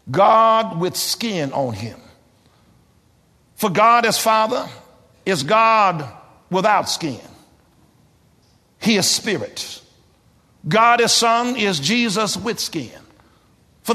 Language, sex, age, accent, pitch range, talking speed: English, male, 50-69, American, 220-265 Hz, 105 wpm